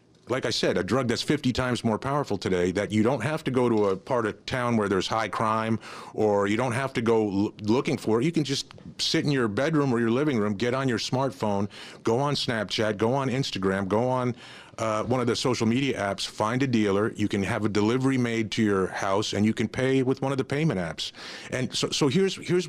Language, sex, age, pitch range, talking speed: English, male, 40-59, 110-135 Hz, 245 wpm